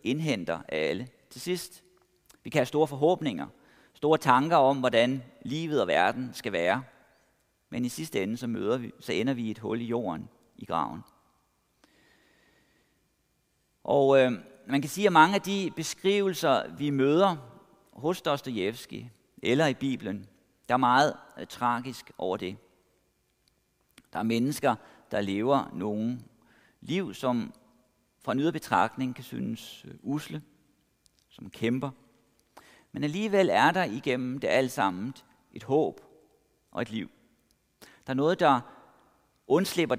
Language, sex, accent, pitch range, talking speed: Danish, male, native, 120-150 Hz, 140 wpm